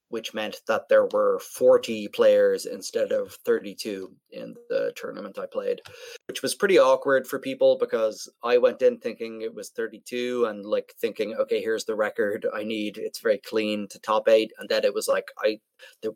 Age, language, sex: 20-39, English, male